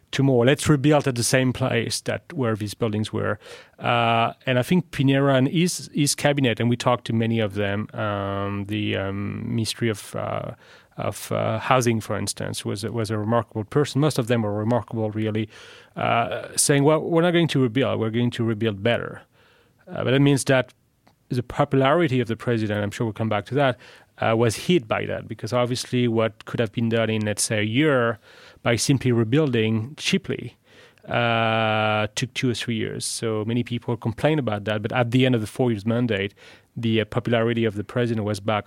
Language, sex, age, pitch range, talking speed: English, male, 30-49, 110-130 Hz, 200 wpm